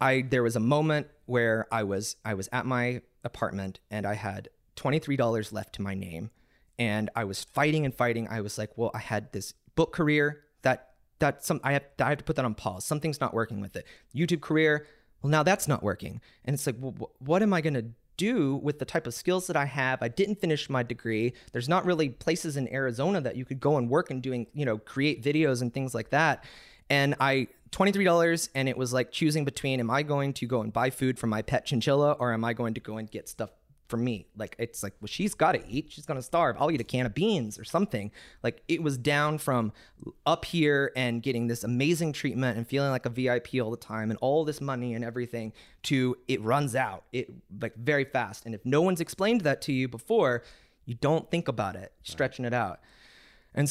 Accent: American